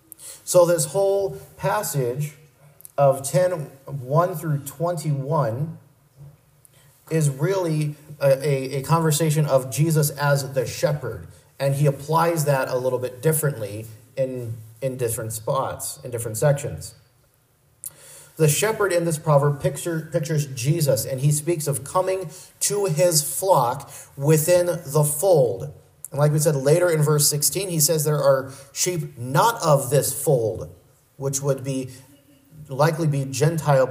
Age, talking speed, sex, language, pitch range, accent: 30-49, 135 wpm, male, English, 135-155 Hz, American